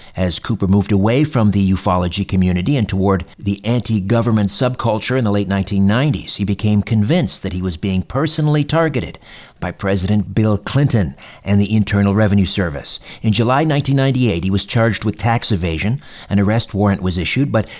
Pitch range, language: 95-115 Hz, English